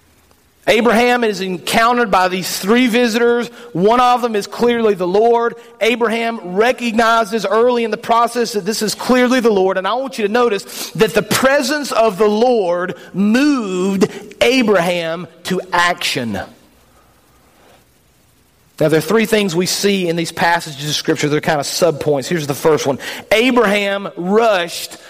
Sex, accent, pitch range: male, American, 180-235 Hz